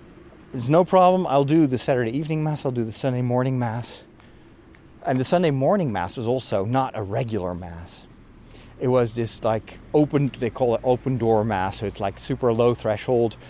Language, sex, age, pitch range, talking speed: English, male, 30-49, 110-150 Hz, 190 wpm